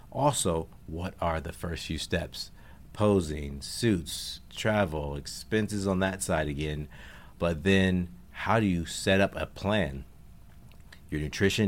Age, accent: 50-69, American